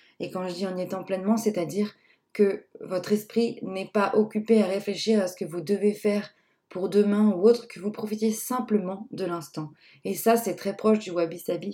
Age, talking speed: 20-39, 205 wpm